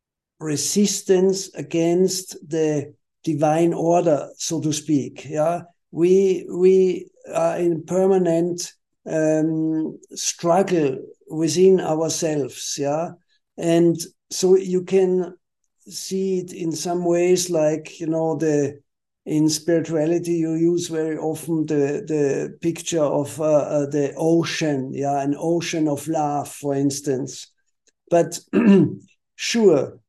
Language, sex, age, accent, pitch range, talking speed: English, male, 50-69, German, 155-175 Hz, 110 wpm